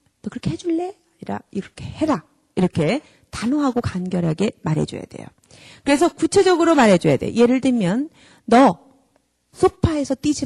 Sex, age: female, 40-59